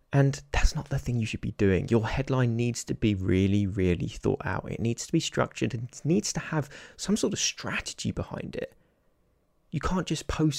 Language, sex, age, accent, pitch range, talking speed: English, male, 20-39, British, 120-170 Hz, 210 wpm